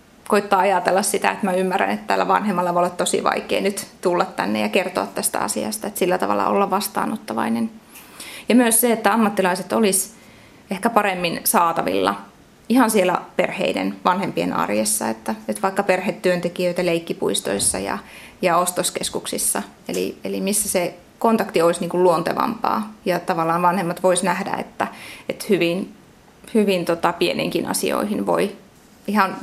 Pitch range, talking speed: 170-215 Hz, 145 wpm